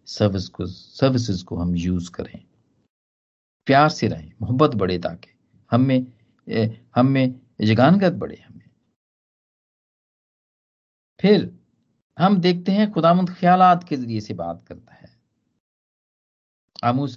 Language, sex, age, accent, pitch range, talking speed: Hindi, male, 50-69, native, 105-160 Hz, 100 wpm